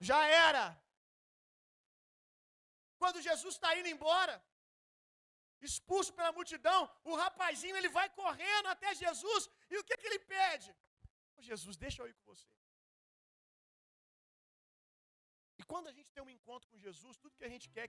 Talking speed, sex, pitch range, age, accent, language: 150 wpm, male, 225-370 Hz, 40-59, Brazilian, Gujarati